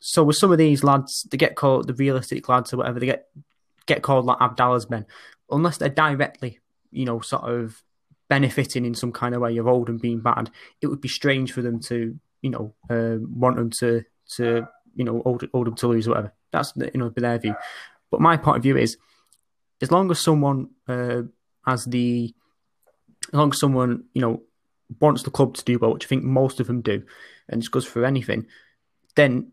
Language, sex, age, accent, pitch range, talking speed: English, male, 20-39, British, 120-135 Hz, 215 wpm